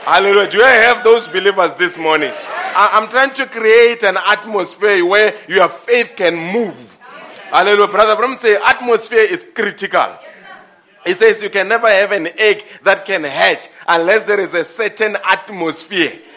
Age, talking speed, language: 30-49, 160 wpm, English